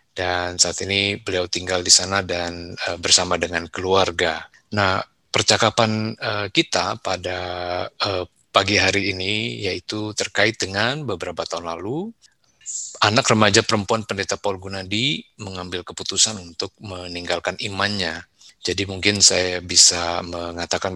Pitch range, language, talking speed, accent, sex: 90-105 Hz, Indonesian, 125 wpm, native, male